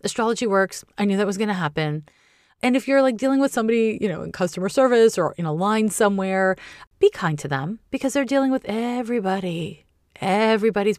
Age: 30-49